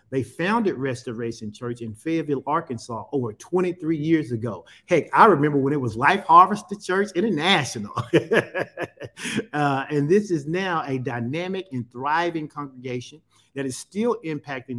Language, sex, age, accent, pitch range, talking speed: English, male, 40-59, American, 120-170 Hz, 140 wpm